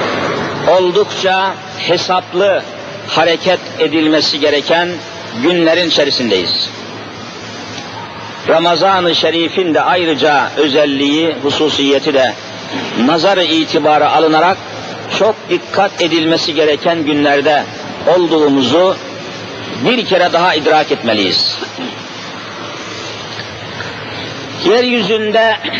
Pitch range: 155-195 Hz